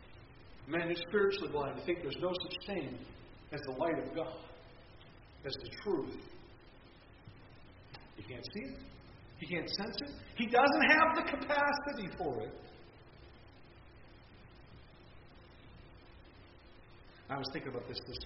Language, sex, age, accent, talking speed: English, male, 50-69, American, 130 wpm